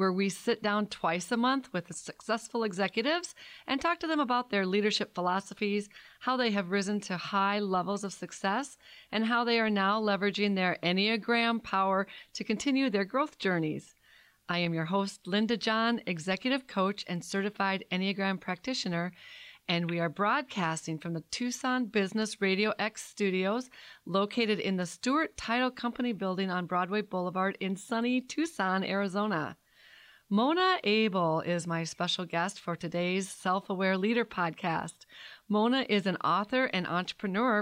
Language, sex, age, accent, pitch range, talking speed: English, female, 40-59, American, 190-235 Hz, 155 wpm